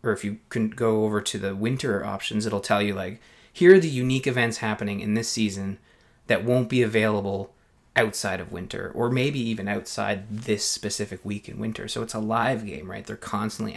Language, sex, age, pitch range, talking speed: English, male, 20-39, 100-120 Hz, 205 wpm